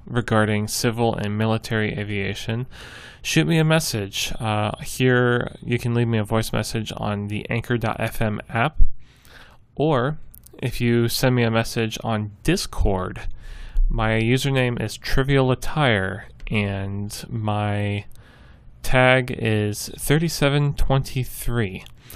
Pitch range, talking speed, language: 110-130 Hz, 110 wpm, English